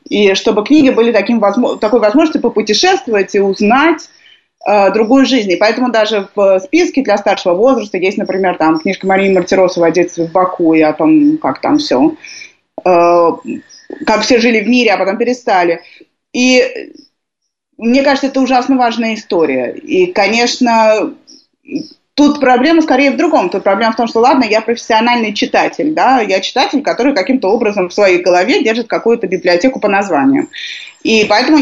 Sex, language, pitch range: female, Russian, 195-290 Hz